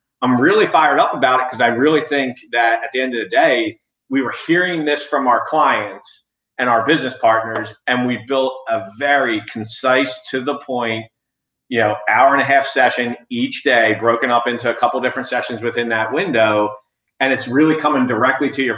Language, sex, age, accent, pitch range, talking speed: English, male, 40-59, American, 110-130 Hz, 200 wpm